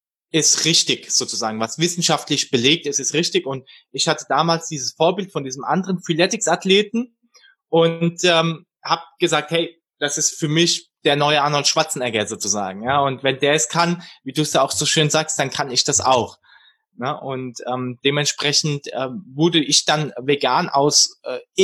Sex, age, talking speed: male, 20-39, 170 wpm